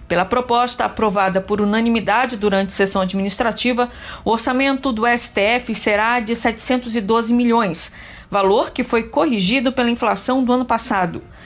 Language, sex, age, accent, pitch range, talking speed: Portuguese, female, 40-59, Brazilian, 215-265 Hz, 130 wpm